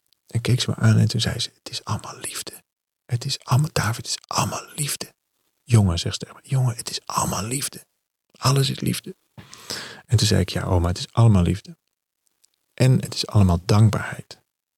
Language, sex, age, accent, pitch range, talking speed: Dutch, male, 40-59, Dutch, 110-140 Hz, 190 wpm